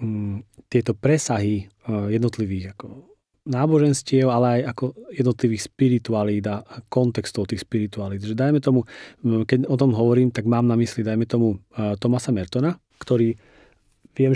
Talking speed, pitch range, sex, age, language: 125 wpm, 115-135 Hz, male, 40-59, Slovak